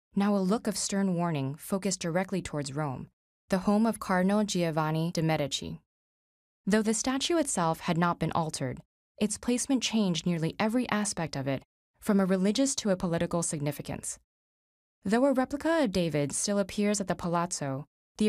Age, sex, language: 20-39, female, English